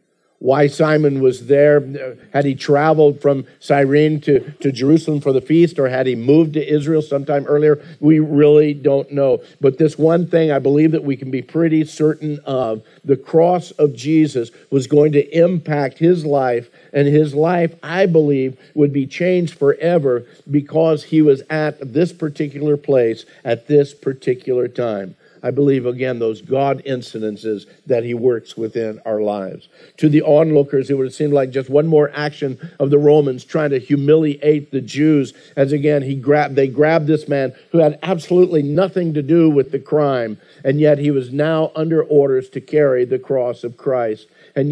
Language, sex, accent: English, male, American